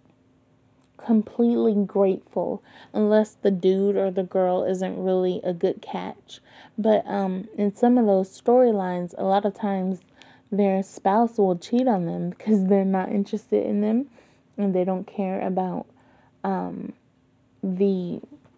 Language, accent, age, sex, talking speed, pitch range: English, American, 20-39, female, 140 wpm, 185-220 Hz